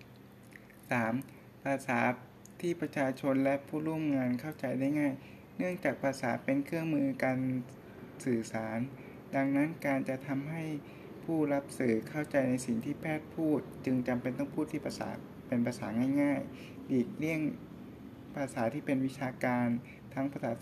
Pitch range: 125-150 Hz